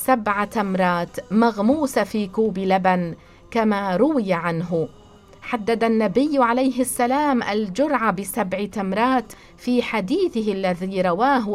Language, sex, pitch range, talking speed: English, female, 195-250 Hz, 105 wpm